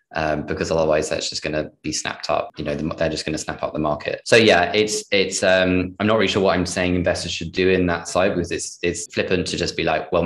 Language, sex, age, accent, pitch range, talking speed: English, male, 20-39, British, 80-100 Hz, 265 wpm